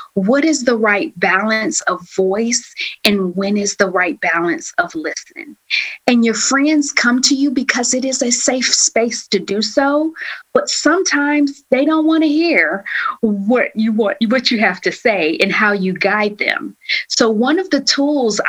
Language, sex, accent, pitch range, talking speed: English, female, American, 190-265 Hz, 180 wpm